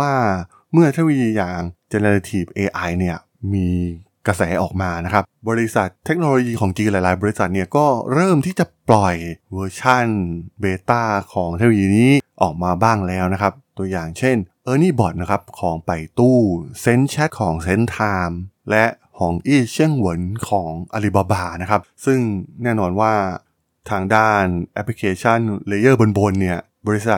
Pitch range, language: 95-120 Hz, Thai